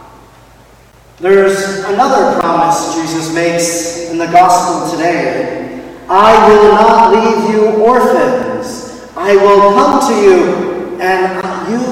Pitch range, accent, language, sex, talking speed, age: 170-230 Hz, American, English, male, 110 wpm, 40-59